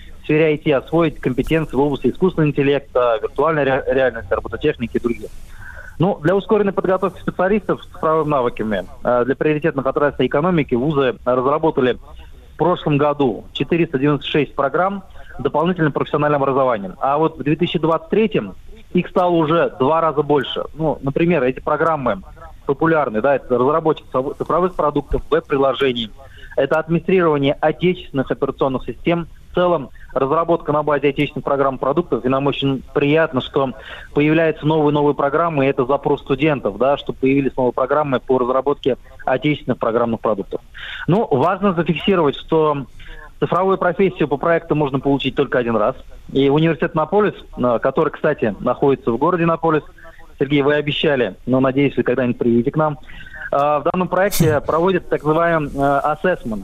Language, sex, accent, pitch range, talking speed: Russian, male, native, 135-165 Hz, 140 wpm